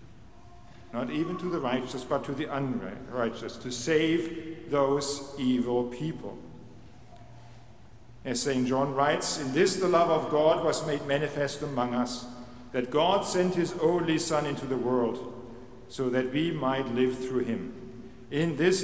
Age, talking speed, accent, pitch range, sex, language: 50-69, 150 wpm, German, 115-140 Hz, male, English